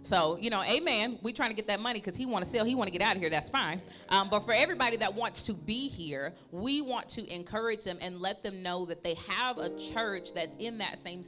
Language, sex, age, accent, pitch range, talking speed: English, female, 30-49, American, 180-220 Hz, 275 wpm